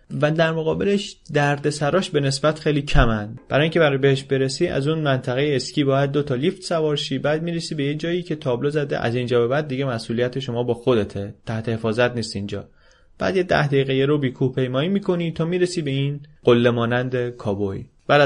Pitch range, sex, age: 120-150 Hz, male, 30-49